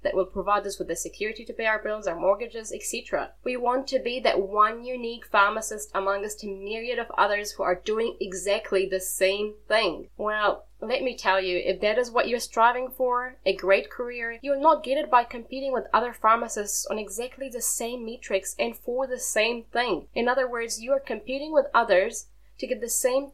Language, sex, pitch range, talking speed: English, female, 210-270 Hz, 210 wpm